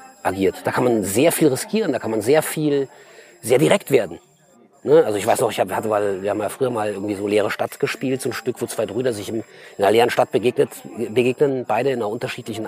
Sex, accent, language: male, German, German